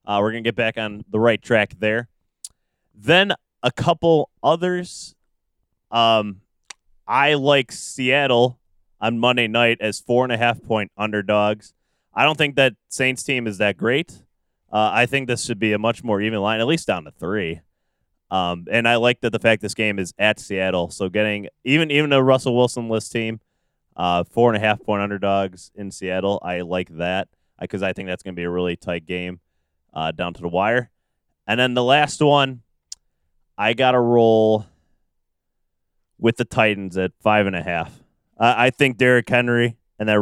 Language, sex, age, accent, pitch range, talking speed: English, male, 20-39, American, 90-120 Hz, 190 wpm